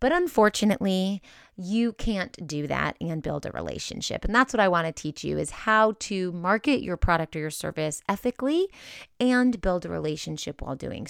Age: 30-49